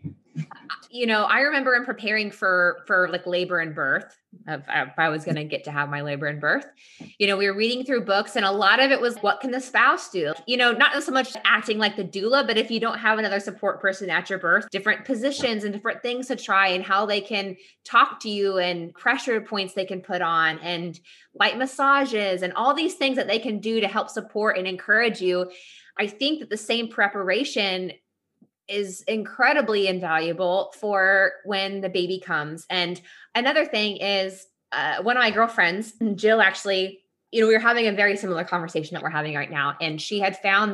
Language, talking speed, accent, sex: English, 215 wpm, American, female